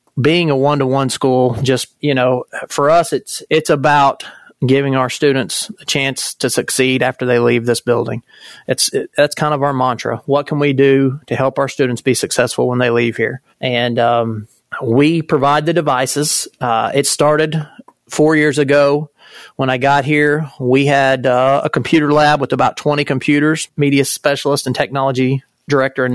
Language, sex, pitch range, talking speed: English, male, 130-150 Hz, 175 wpm